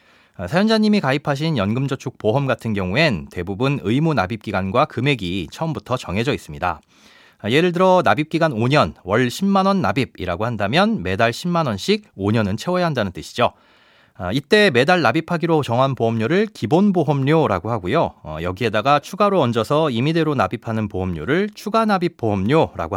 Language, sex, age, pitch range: Korean, male, 30-49, 110-175 Hz